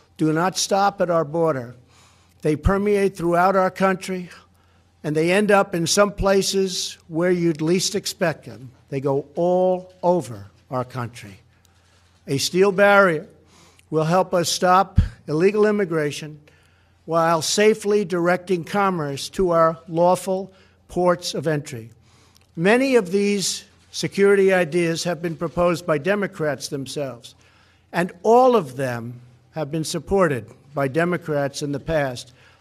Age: 60-79